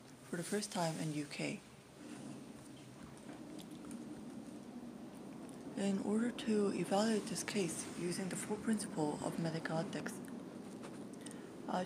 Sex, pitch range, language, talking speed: female, 165-200 Hz, English, 100 wpm